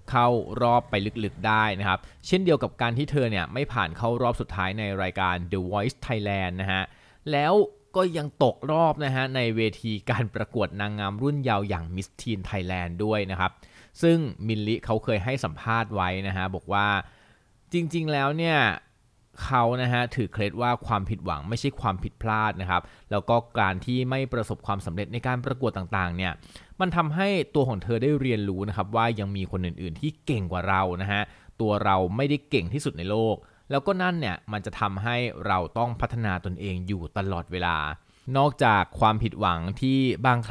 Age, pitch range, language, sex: 20-39, 95-130 Hz, Thai, male